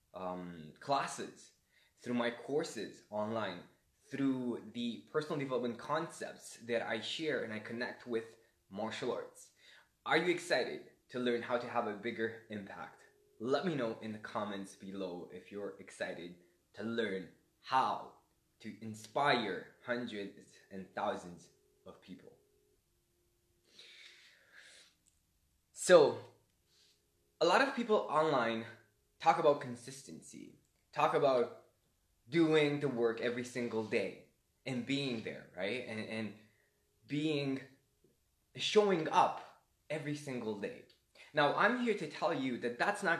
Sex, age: male, 20-39